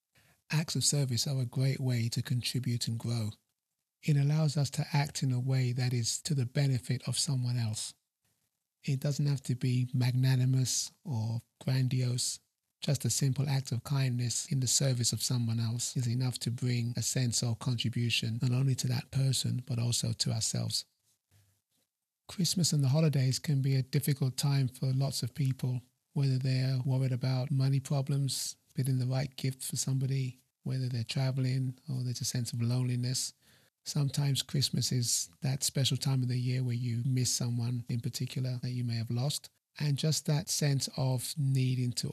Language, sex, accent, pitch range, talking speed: English, male, British, 120-135 Hz, 180 wpm